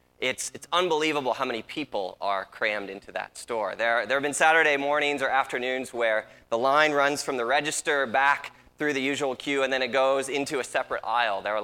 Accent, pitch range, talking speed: American, 110-150 Hz, 210 wpm